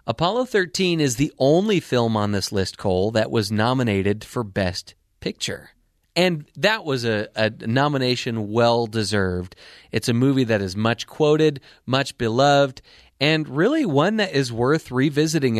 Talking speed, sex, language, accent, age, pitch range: 150 wpm, male, English, American, 30-49, 115-160 Hz